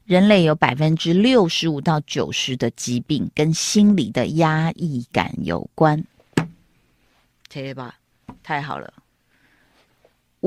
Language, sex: Chinese, female